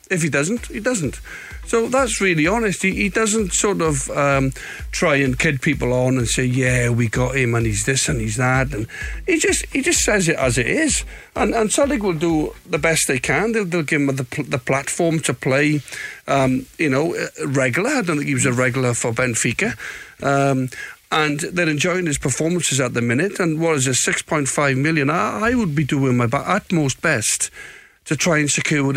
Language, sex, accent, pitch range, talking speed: English, male, British, 130-180 Hz, 220 wpm